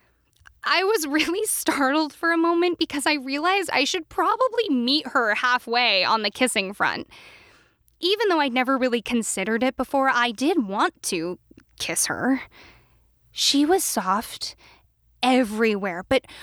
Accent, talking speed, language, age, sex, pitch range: American, 145 wpm, English, 10-29, female, 210-305 Hz